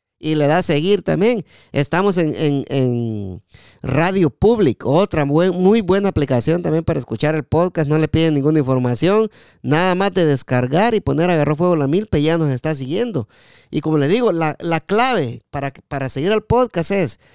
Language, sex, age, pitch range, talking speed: Spanish, male, 40-59, 135-190 Hz, 190 wpm